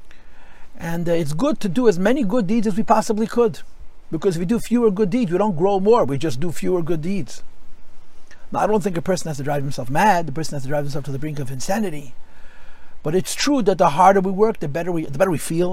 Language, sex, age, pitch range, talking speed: English, male, 50-69, 150-210 Hz, 260 wpm